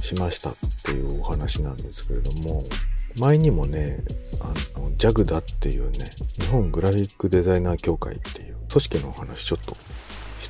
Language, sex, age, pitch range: Japanese, male, 40-59, 75-110 Hz